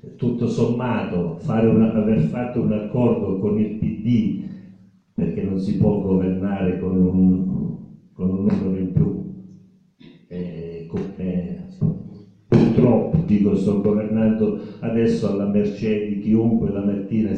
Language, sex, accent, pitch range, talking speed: Italian, male, native, 95-120 Hz, 120 wpm